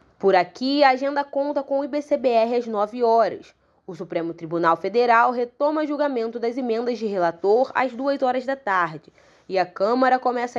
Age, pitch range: 10-29, 185-265 Hz